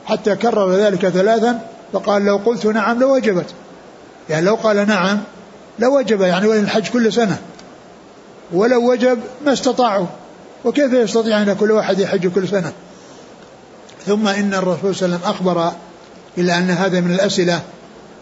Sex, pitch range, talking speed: male, 180-210 Hz, 140 wpm